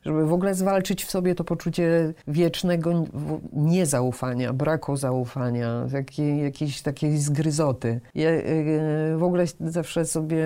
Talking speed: 115 wpm